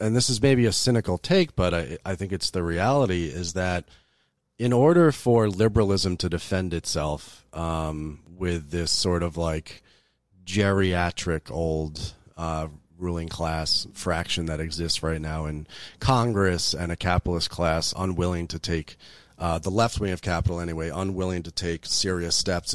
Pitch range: 80-95 Hz